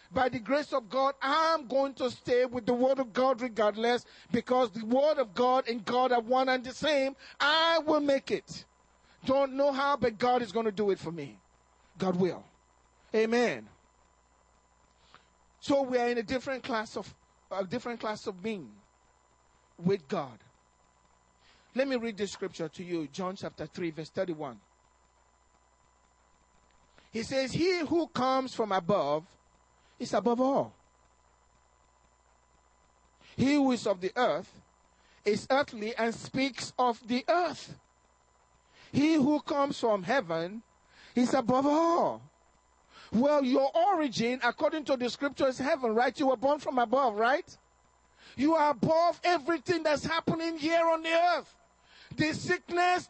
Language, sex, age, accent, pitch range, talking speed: English, male, 40-59, Nigerian, 190-290 Hz, 150 wpm